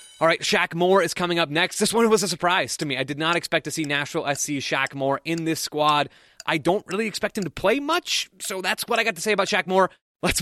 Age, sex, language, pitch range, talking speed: 20-39, male, English, 140-175 Hz, 270 wpm